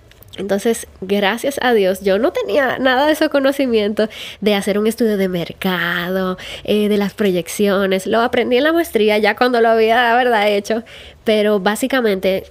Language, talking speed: Spanish, 170 wpm